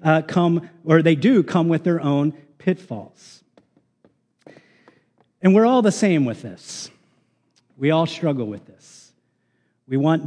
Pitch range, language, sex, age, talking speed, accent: 140-190 Hz, English, male, 40-59, 140 wpm, American